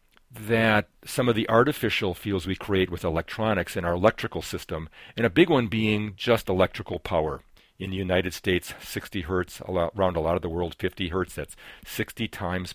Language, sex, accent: English, male, American